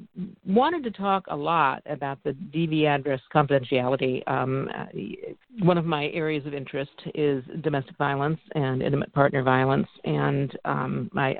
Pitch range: 140-170 Hz